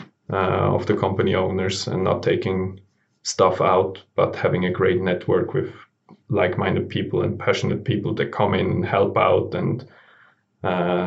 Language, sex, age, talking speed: English, male, 20-39, 155 wpm